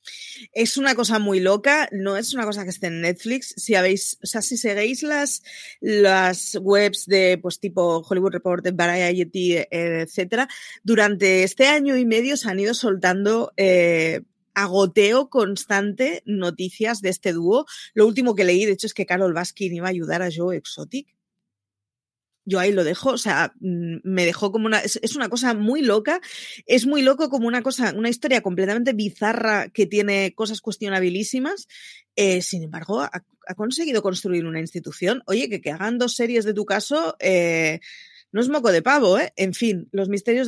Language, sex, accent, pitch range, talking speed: Spanish, female, Spanish, 180-230 Hz, 175 wpm